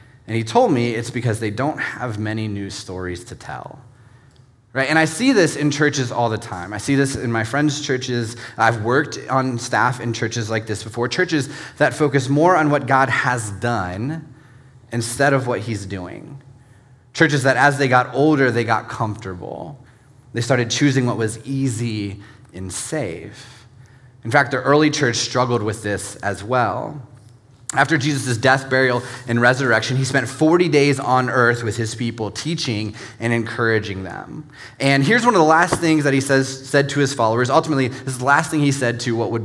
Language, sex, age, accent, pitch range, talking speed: English, male, 30-49, American, 115-140 Hz, 190 wpm